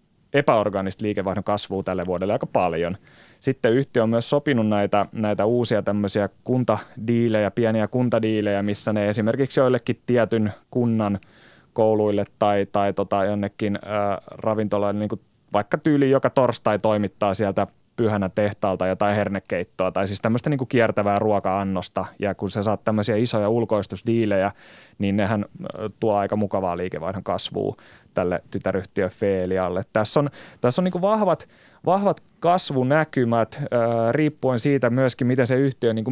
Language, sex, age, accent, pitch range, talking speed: Finnish, male, 20-39, native, 100-120 Hz, 130 wpm